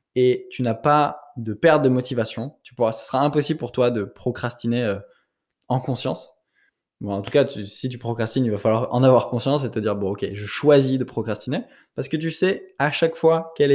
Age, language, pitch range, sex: 20-39, French, 115-150 Hz, male